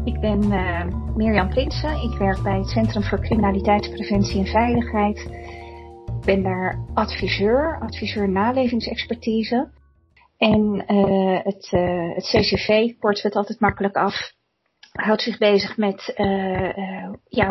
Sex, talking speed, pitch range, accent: female, 135 wpm, 190-220 Hz, Dutch